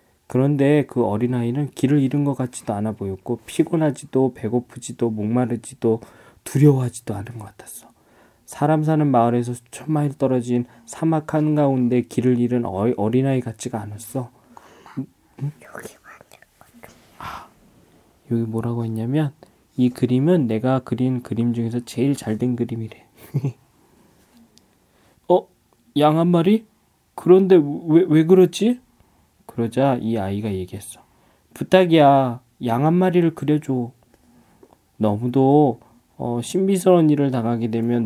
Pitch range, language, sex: 115-145 Hz, Korean, male